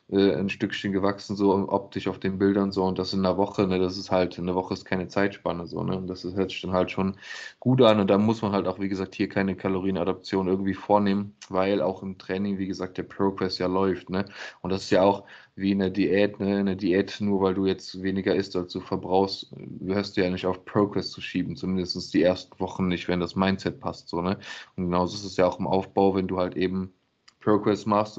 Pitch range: 90-100 Hz